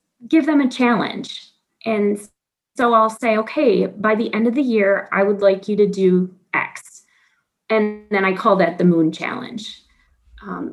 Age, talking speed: 30-49, 175 wpm